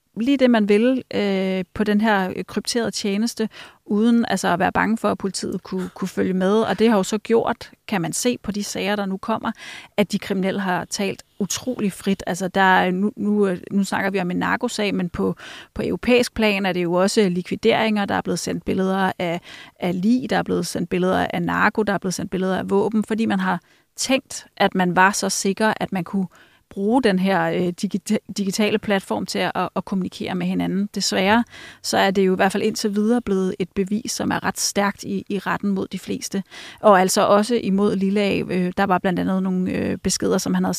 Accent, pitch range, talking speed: native, 190-220 Hz, 215 wpm